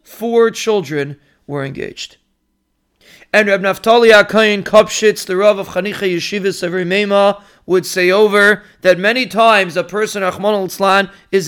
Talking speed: 135 wpm